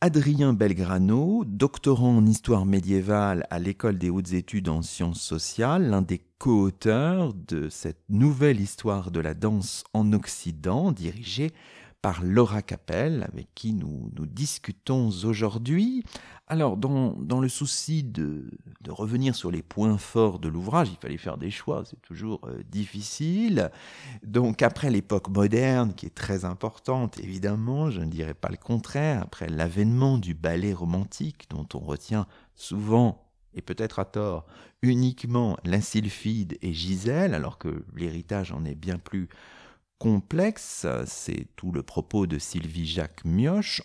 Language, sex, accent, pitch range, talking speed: French, male, French, 95-130 Hz, 145 wpm